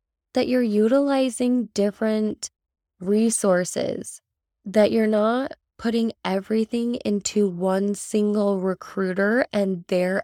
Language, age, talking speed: English, 20-39, 95 wpm